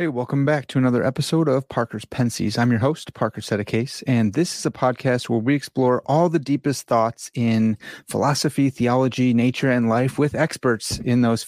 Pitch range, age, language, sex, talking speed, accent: 115-145 Hz, 30-49, English, male, 190 wpm, American